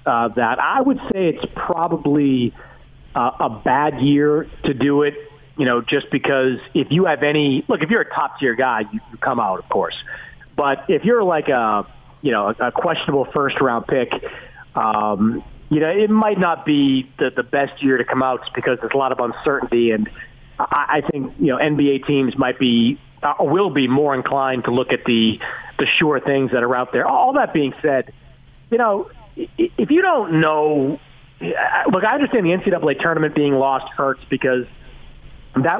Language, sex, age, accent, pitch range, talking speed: English, male, 40-59, American, 125-150 Hz, 190 wpm